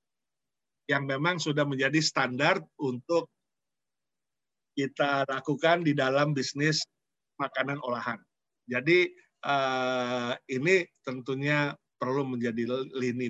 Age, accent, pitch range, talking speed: 50-69, native, 130-170 Hz, 90 wpm